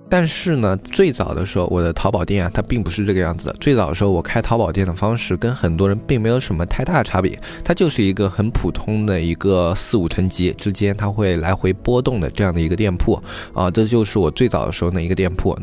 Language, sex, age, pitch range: Chinese, male, 20-39, 95-125 Hz